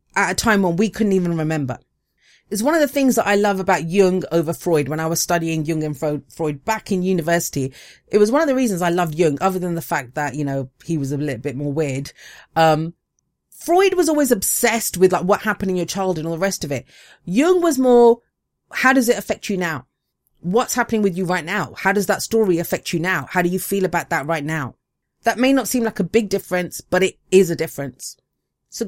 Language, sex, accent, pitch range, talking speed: English, female, British, 150-200 Hz, 240 wpm